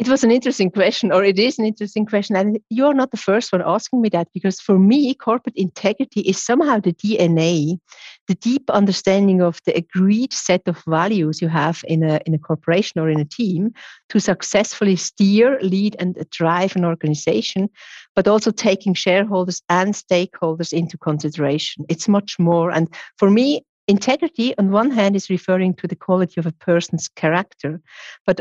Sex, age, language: female, 50-69, English